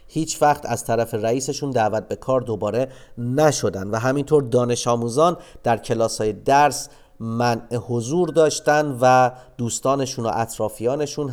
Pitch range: 110-145 Hz